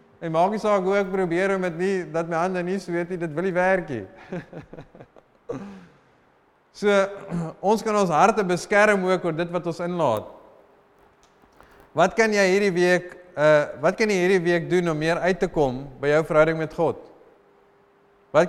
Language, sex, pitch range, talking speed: English, male, 155-190 Hz, 180 wpm